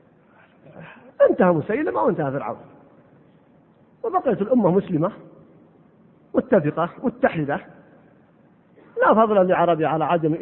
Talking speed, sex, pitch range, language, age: 85 wpm, male, 185-255 Hz, Arabic, 50-69